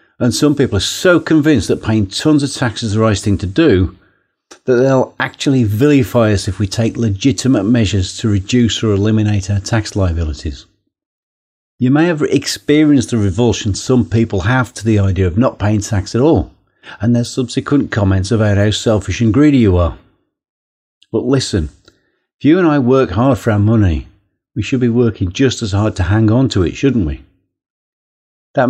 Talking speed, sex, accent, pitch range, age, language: 185 wpm, male, British, 100-125 Hz, 50-69, English